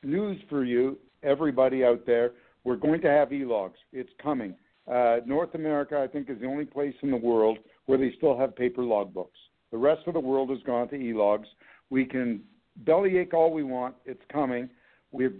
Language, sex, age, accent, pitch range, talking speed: English, male, 60-79, American, 130-165 Hz, 190 wpm